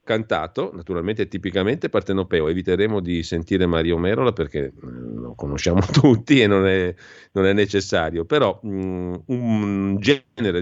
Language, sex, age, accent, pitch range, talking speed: Italian, male, 40-59, native, 85-110 Hz, 130 wpm